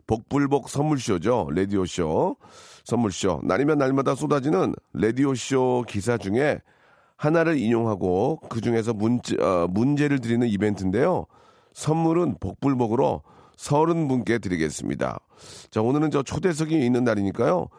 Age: 40-59